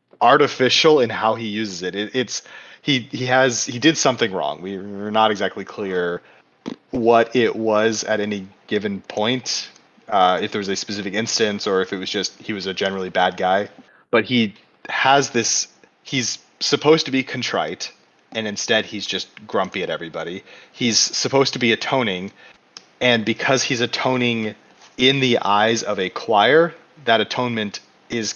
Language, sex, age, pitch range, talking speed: English, male, 30-49, 100-130 Hz, 165 wpm